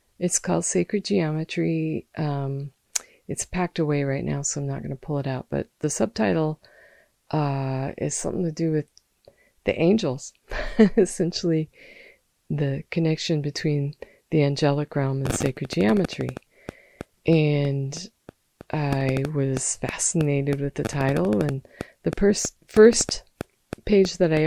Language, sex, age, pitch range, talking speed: English, female, 40-59, 135-160 Hz, 130 wpm